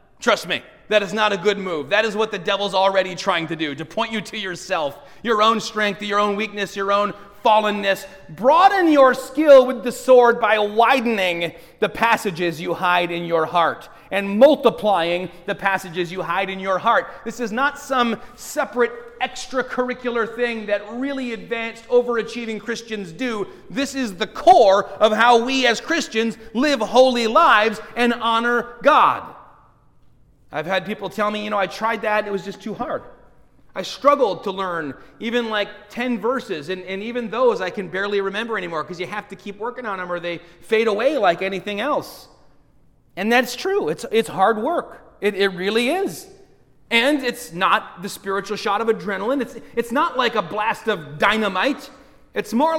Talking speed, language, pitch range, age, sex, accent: 180 wpm, English, 195-245 Hz, 30-49, male, American